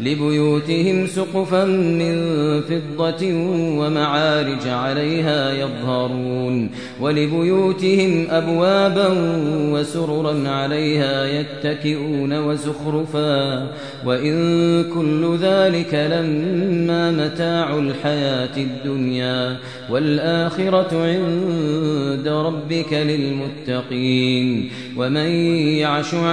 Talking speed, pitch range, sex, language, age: 60 wpm, 140-165 Hz, male, Arabic, 30-49